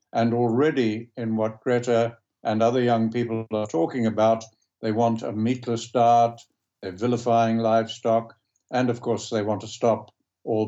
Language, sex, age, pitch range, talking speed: Turkish, male, 60-79, 110-125 Hz, 155 wpm